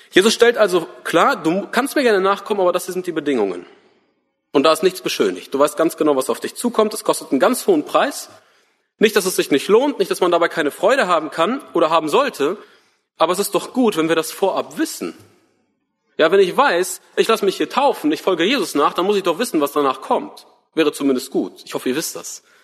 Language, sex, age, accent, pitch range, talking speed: German, male, 40-59, German, 160-235 Hz, 235 wpm